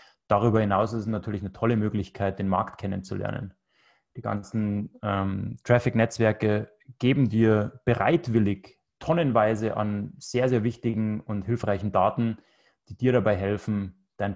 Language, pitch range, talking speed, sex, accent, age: German, 100-120 Hz, 130 wpm, male, German, 20-39